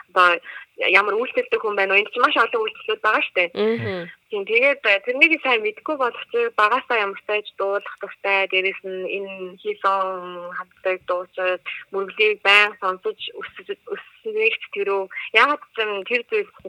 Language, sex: Korean, female